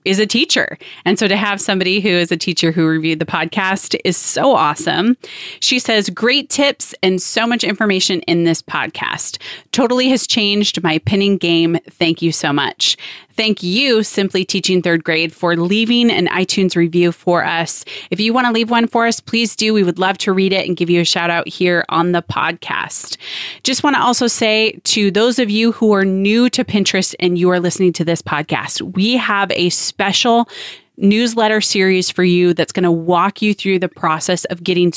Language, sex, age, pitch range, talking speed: English, female, 30-49, 175-215 Hz, 205 wpm